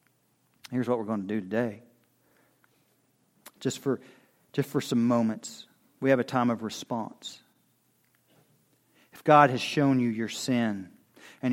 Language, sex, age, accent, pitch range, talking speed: English, male, 40-59, American, 115-150 Hz, 140 wpm